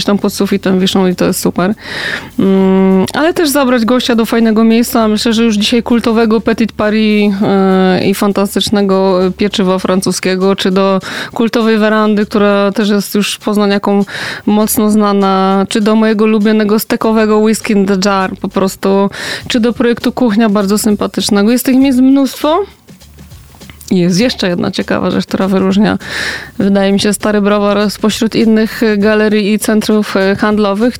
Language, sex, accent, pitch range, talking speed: Polish, female, native, 205-235 Hz, 150 wpm